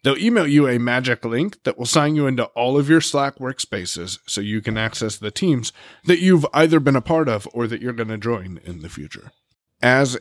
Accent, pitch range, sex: American, 115-155 Hz, male